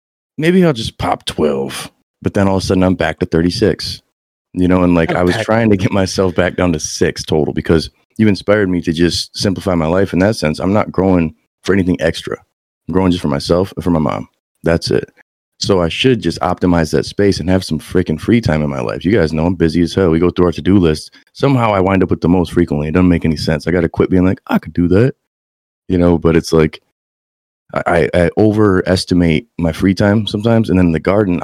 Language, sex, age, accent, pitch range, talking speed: English, male, 30-49, American, 80-95 Hz, 245 wpm